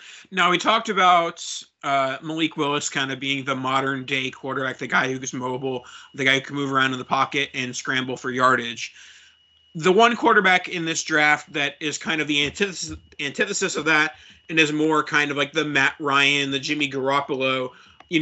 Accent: American